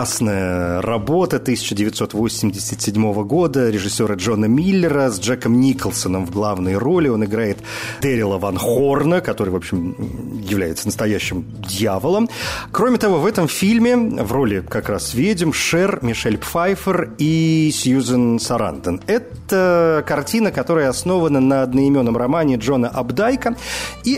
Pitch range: 110-170 Hz